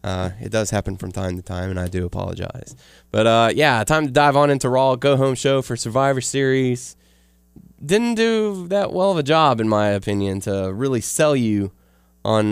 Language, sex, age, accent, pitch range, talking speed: English, male, 20-39, American, 95-130 Hz, 200 wpm